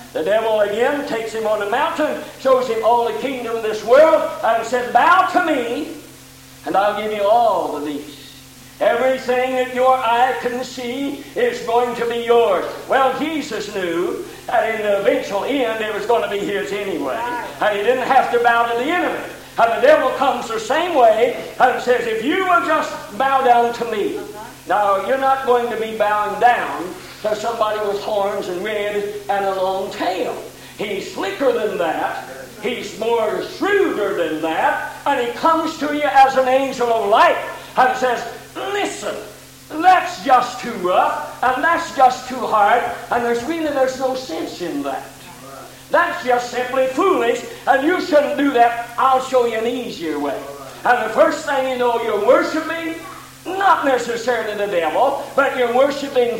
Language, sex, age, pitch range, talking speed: English, male, 60-79, 220-285 Hz, 180 wpm